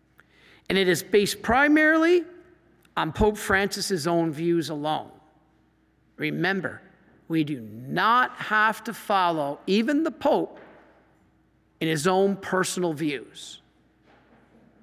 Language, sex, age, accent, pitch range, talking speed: English, male, 50-69, American, 170-250 Hz, 105 wpm